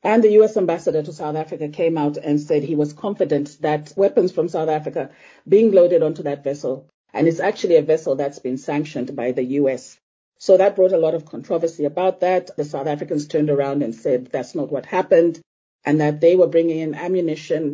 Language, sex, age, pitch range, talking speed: English, female, 40-59, 145-180 Hz, 210 wpm